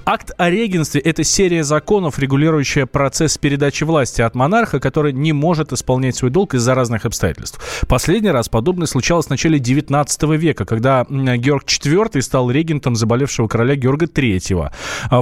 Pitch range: 125-165 Hz